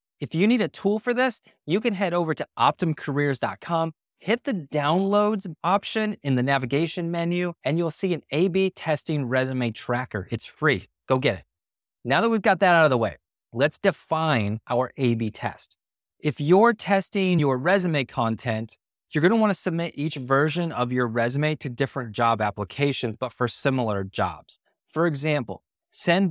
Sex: male